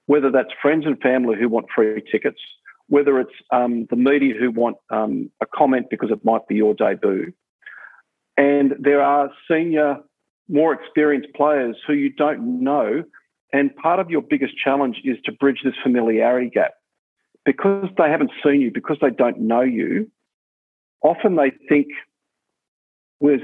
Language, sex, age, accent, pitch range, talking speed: English, male, 50-69, Australian, 115-145 Hz, 160 wpm